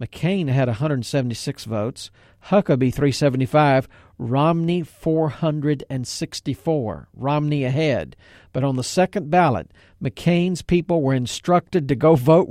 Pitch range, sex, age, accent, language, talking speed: 130-175 Hz, male, 50-69, American, English, 105 wpm